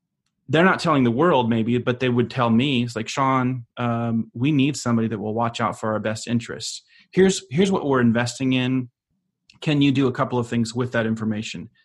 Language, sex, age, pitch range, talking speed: English, male, 30-49, 115-140 Hz, 215 wpm